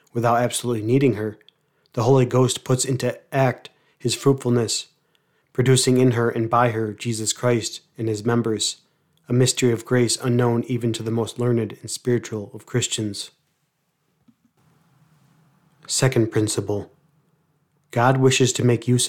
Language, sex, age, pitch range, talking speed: English, male, 30-49, 115-135 Hz, 140 wpm